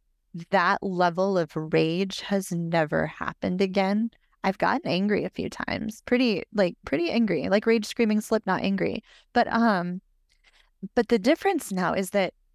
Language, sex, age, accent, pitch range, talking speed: English, female, 20-39, American, 170-215 Hz, 155 wpm